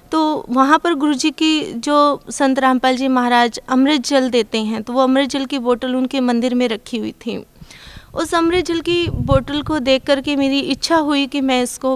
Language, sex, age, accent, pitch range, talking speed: Hindi, female, 20-39, native, 260-330 Hz, 205 wpm